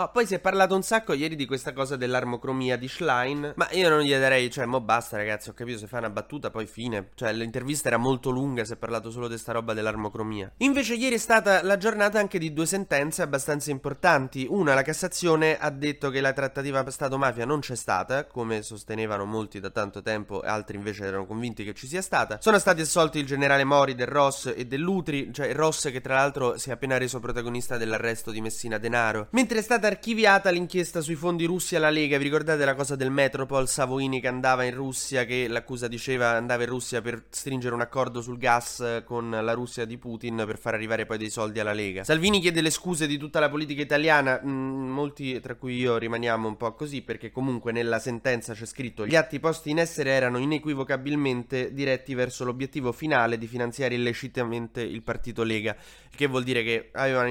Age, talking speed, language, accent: 20-39, 210 wpm, Italian, native